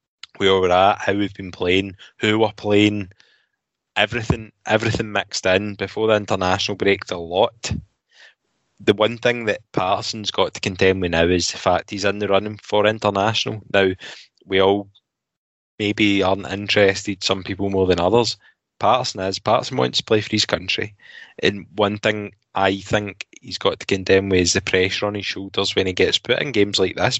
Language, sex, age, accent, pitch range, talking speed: English, male, 10-29, British, 95-105 Hz, 180 wpm